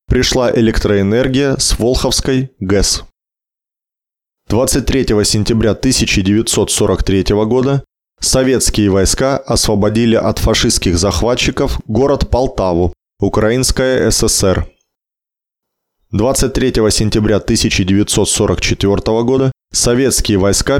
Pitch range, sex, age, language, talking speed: 100-130 Hz, male, 20-39, Russian, 70 wpm